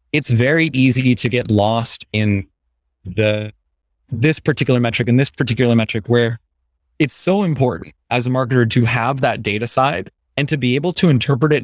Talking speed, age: 175 wpm, 20-39